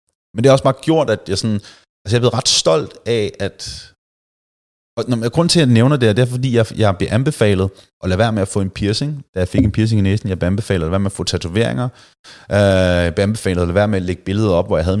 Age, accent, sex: 30-49, native, male